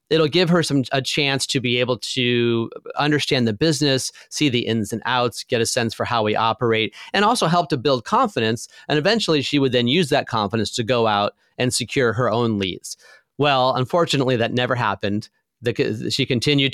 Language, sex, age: English, male, 30-49